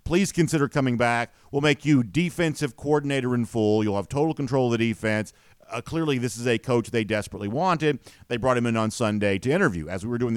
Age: 50-69